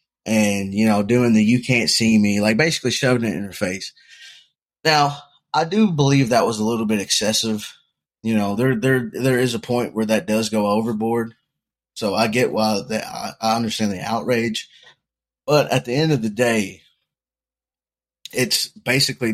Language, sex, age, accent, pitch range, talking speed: English, male, 20-39, American, 105-130 Hz, 175 wpm